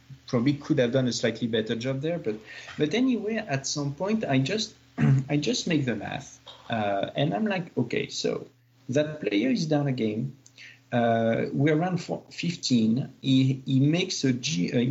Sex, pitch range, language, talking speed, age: male, 110-145 Hz, English, 165 wpm, 50-69